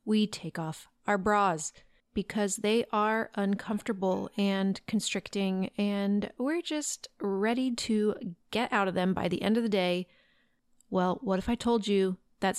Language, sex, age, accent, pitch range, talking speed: English, female, 30-49, American, 195-235 Hz, 155 wpm